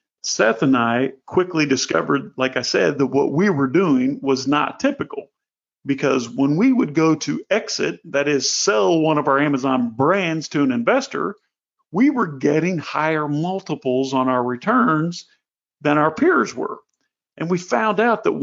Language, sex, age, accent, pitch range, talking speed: English, male, 40-59, American, 140-205 Hz, 165 wpm